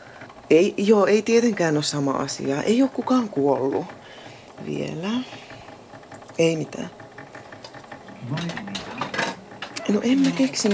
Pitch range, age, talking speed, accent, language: 150-215 Hz, 30-49, 100 wpm, native, Finnish